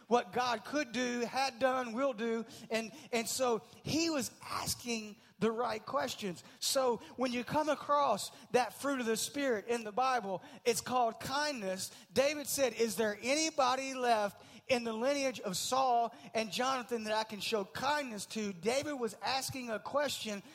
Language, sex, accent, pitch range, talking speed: English, male, American, 175-245 Hz, 165 wpm